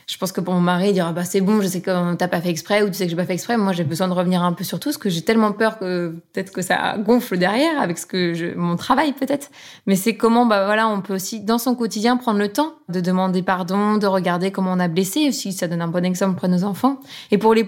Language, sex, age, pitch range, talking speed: French, female, 20-39, 185-220 Hz, 300 wpm